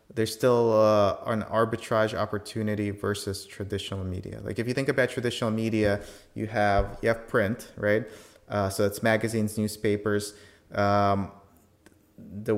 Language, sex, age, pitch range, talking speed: English, male, 30-49, 105-120 Hz, 140 wpm